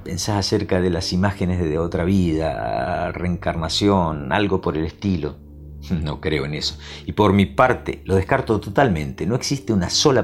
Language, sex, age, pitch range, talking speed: Spanish, male, 50-69, 75-100 Hz, 165 wpm